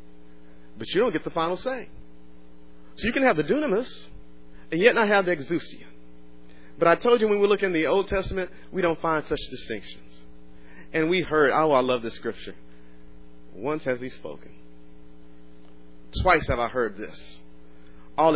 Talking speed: 175 wpm